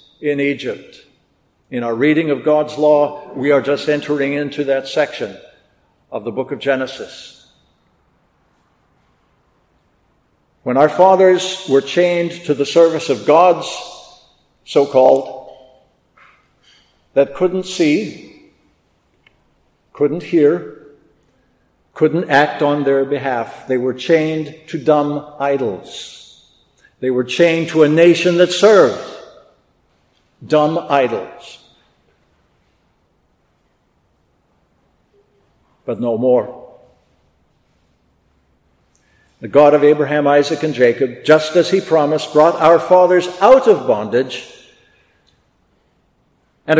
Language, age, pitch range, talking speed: English, 60-79, 135-175 Hz, 100 wpm